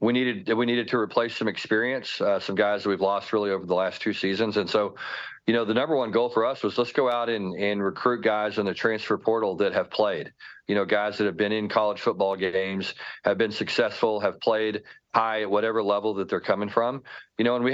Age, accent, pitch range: 40-59, American, 95-110 Hz